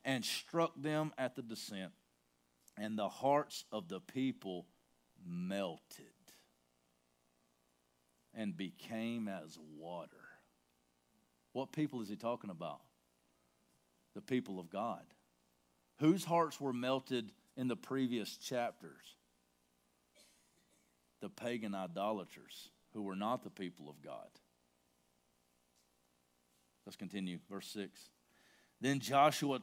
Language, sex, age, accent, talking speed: English, male, 50-69, American, 105 wpm